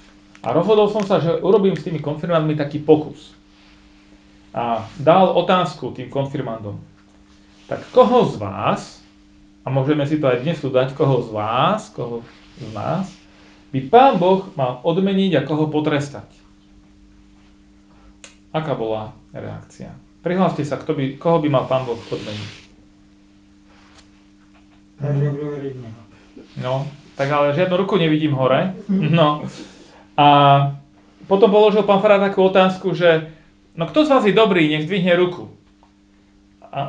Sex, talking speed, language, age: male, 135 wpm, Slovak, 40-59